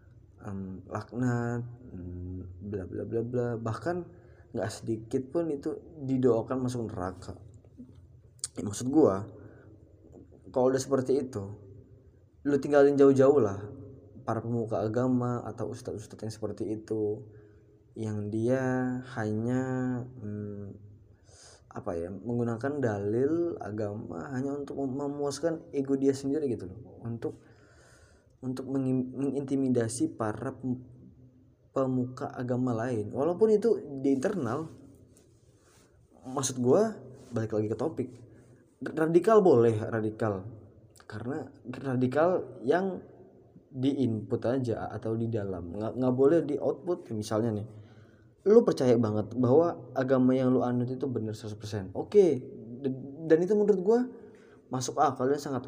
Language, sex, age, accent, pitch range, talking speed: Indonesian, male, 20-39, native, 110-135 Hz, 120 wpm